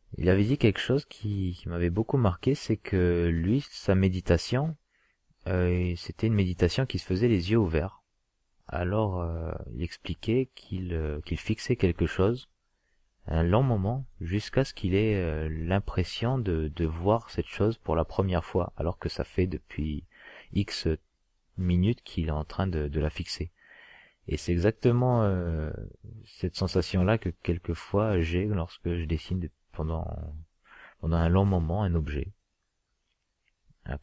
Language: French